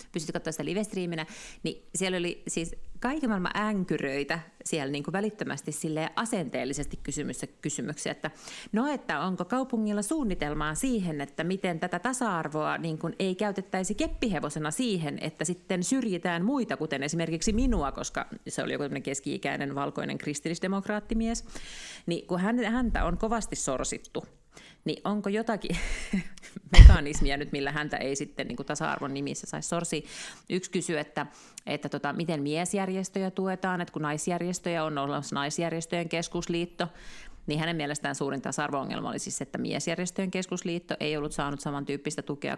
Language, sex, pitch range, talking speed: Finnish, female, 155-200 Hz, 140 wpm